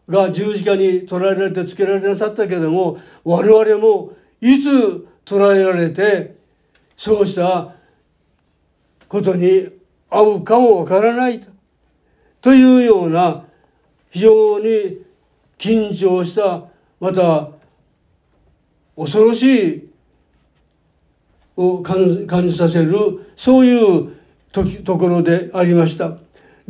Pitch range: 170-215 Hz